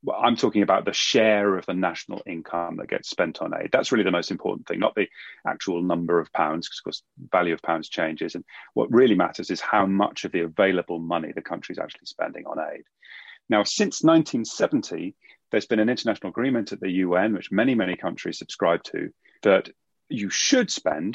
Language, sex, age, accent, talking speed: English, male, 30-49, British, 205 wpm